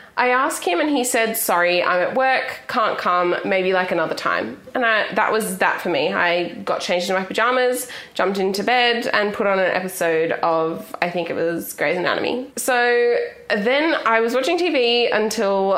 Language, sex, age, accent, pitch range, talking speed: English, female, 20-39, Australian, 185-245 Hz, 190 wpm